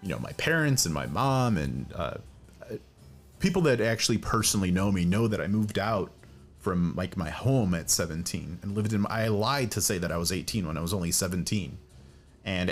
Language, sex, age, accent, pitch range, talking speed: English, male, 30-49, American, 95-125 Hz, 210 wpm